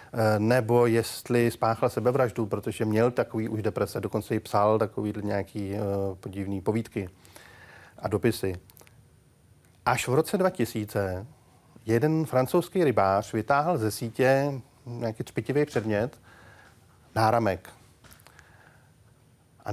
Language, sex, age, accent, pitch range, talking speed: Czech, male, 40-59, native, 110-135 Hz, 105 wpm